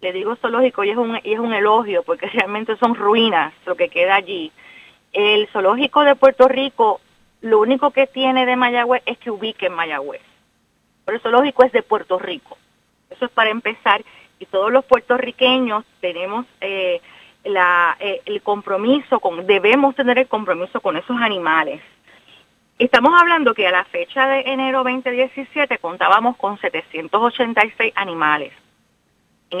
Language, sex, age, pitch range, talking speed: Spanish, female, 30-49, 200-270 Hz, 155 wpm